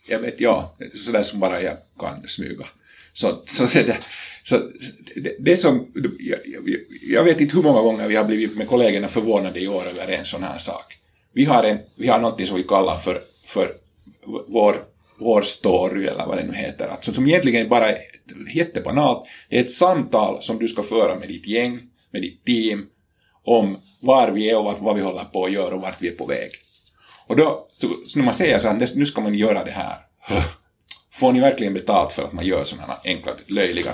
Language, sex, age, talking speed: Swedish, male, 50-69, 200 wpm